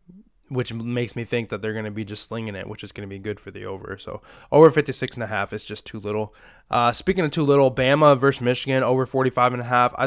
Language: English